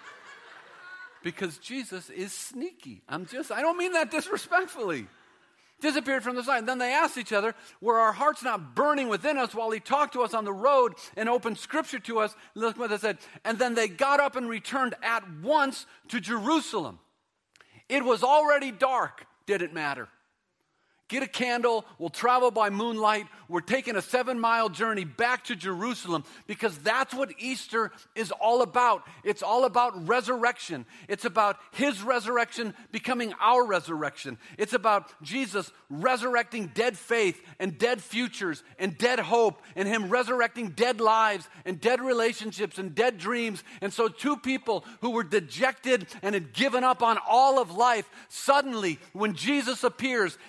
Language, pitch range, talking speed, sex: English, 210-255 Hz, 165 wpm, male